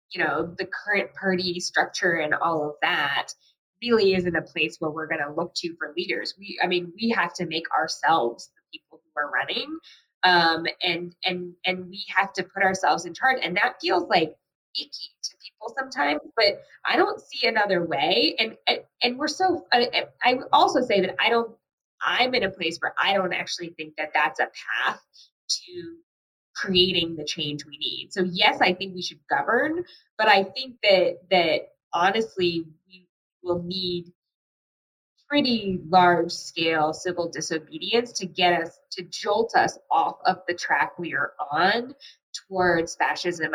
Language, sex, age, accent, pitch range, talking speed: English, female, 20-39, American, 170-215 Hz, 175 wpm